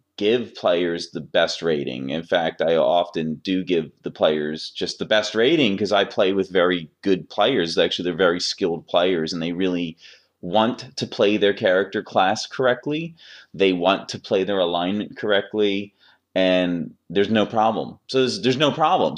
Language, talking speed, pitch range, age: English, 170 wpm, 95-115 Hz, 30-49